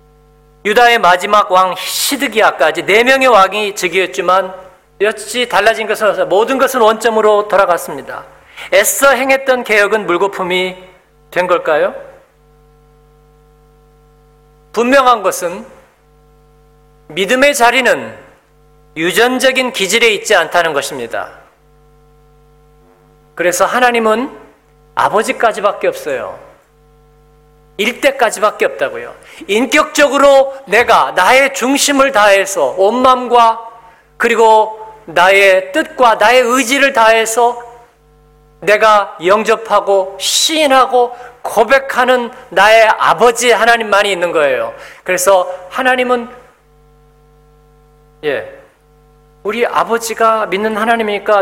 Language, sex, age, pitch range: Korean, male, 40-59, 150-245 Hz